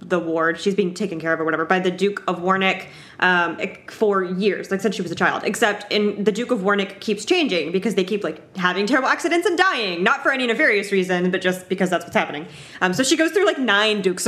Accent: American